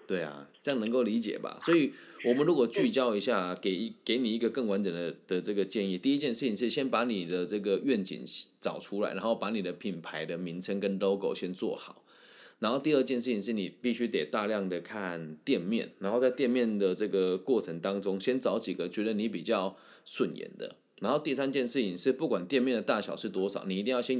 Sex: male